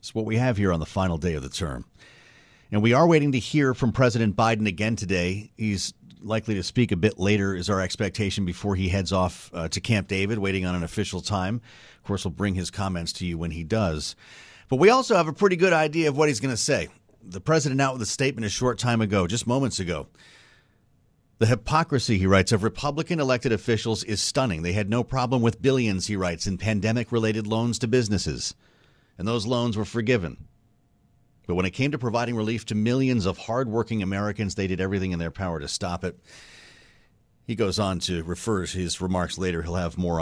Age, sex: 40-59, male